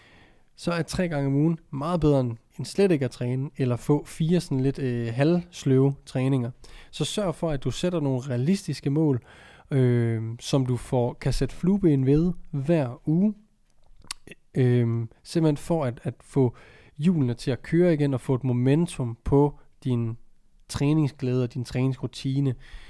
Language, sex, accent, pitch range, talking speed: Danish, male, native, 125-155 Hz, 160 wpm